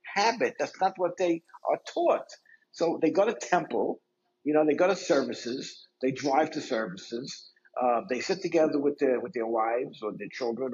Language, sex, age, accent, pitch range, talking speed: English, male, 60-79, American, 135-185 Hz, 190 wpm